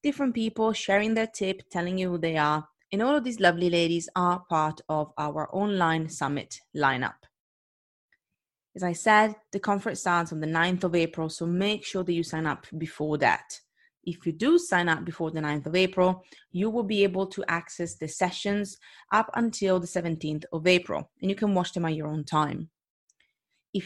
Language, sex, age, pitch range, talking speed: English, female, 30-49, 165-205 Hz, 195 wpm